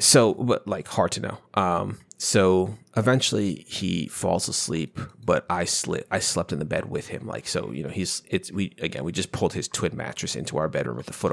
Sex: male